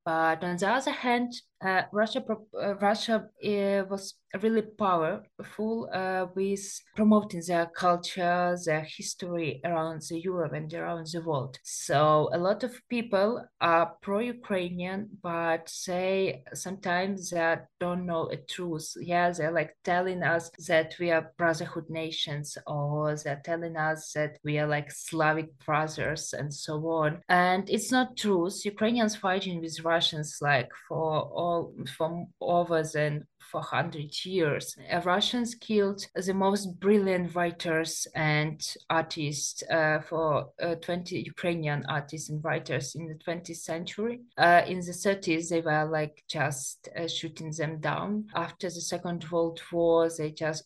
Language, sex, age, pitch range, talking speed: English, female, 20-39, 155-185 Hz, 145 wpm